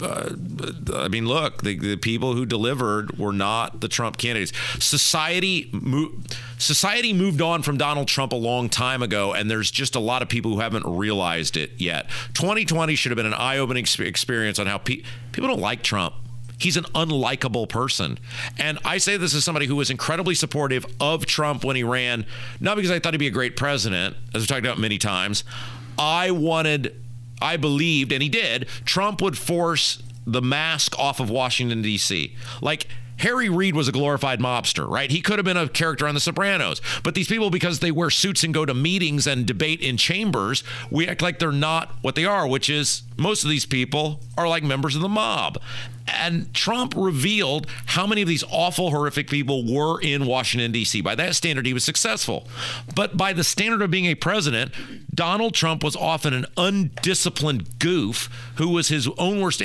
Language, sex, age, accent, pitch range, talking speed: English, male, 40-59, American, 120-170 Hz, 195 wpm